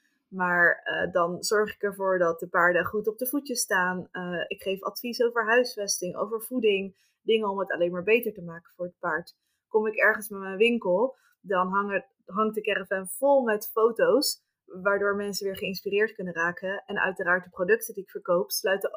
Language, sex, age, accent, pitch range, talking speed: Dutch, female, 20-39, Dutch, 180-215 Hz, 190 wpm